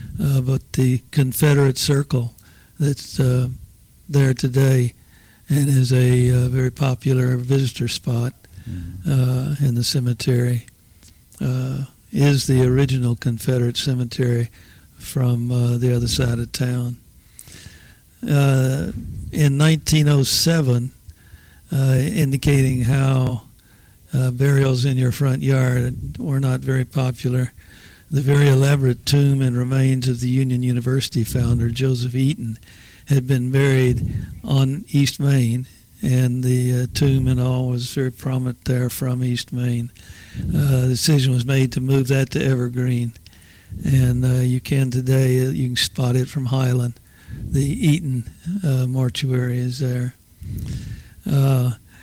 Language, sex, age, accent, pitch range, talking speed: English, male, 60-79, American, 120-135 Hz, 130 wpm